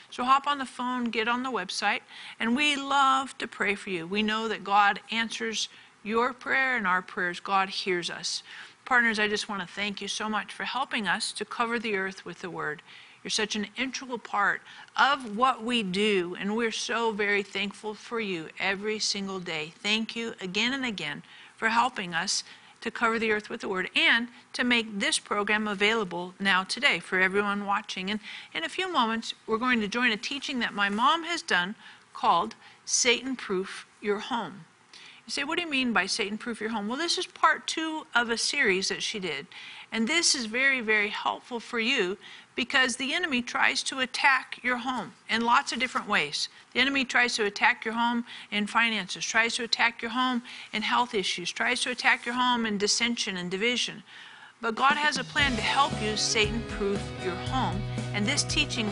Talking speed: 200 wpm